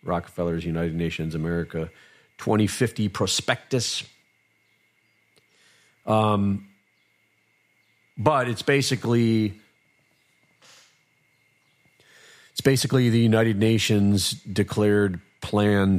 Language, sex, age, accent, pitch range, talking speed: English, male, 40-59, American, 90-110 Hz, 65 wpm